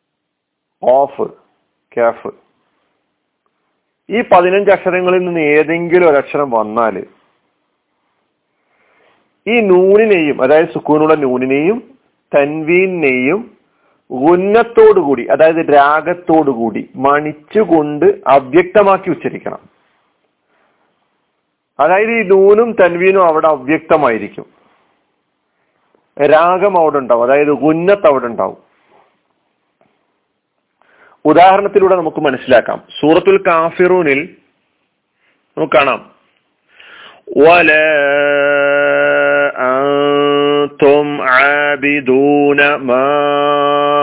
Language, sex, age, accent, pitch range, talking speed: Malayalam, male, 40-59, native, 145-185 Hz, 55 wpm